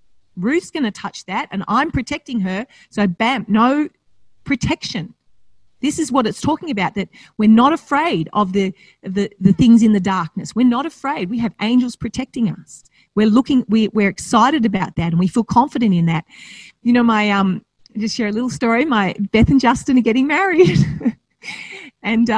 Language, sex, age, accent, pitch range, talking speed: English, female, 40-59, Australian, 195-245 Hz, 190 wpm